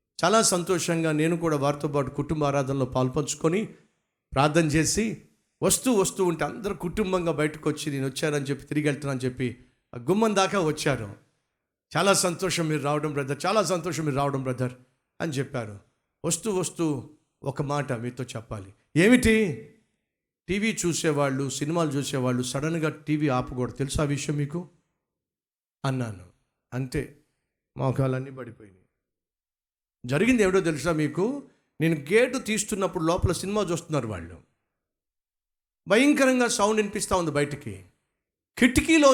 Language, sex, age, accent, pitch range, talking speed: Telugu, male, 50-69, native, 125-180 Hz, 120 wpm